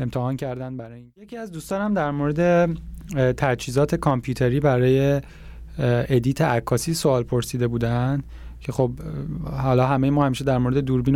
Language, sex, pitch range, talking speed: Persian, male, 125-150 Hz, 140 wpm